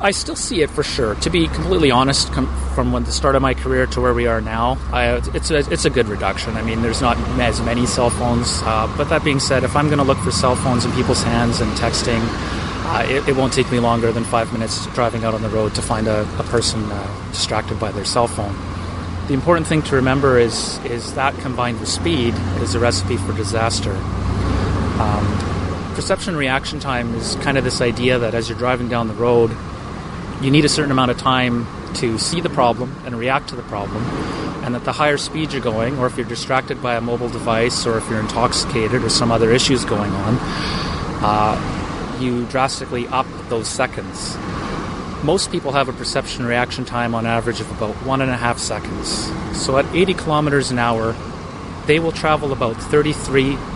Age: 30-49